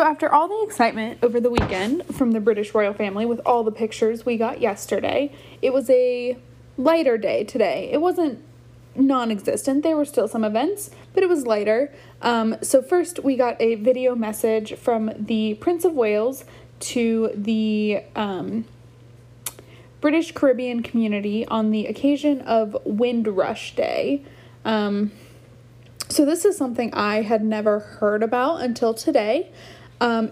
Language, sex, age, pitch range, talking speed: English, female, 10-29, 215-275 Hz, 150 wpm